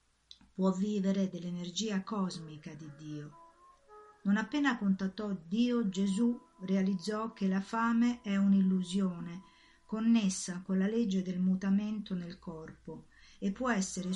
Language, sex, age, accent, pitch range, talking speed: Italian, female, 50-69, native, 180-215 Hz, 120 wpm